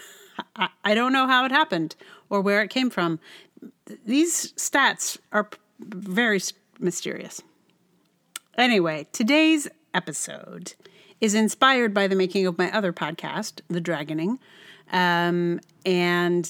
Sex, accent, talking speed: female, American, 115 wpm